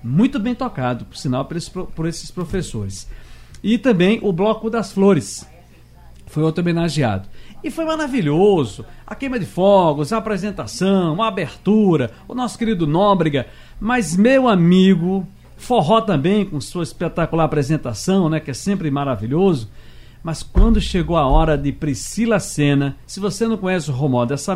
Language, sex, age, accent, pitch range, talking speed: Portuguese, male, 60-79, Brazilian, 140-195 Hz, 150 wpm